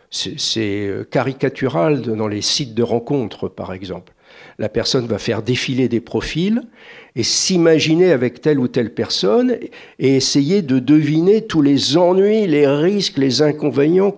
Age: 60-79